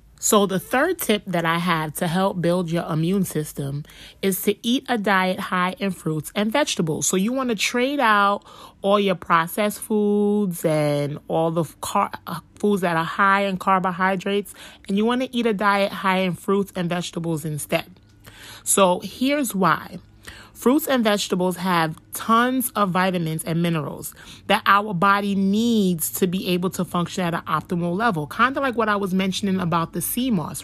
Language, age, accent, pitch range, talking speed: English, 30-49, American, 165-205 Hz, 180 wpm